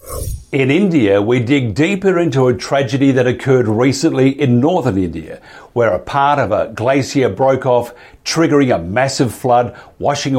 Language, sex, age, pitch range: English, male, 50-69, 115-145 Hz